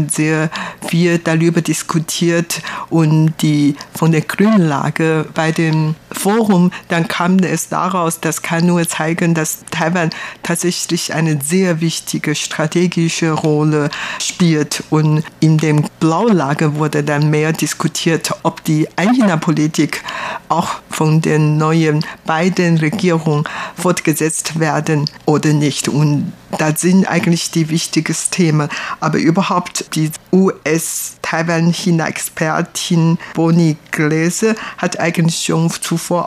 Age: 50-69